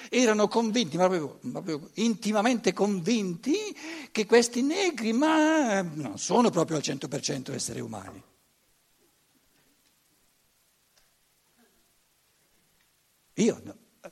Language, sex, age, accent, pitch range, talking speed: Italian, male, 60-79, native, 150-215 Hz, 70 wpm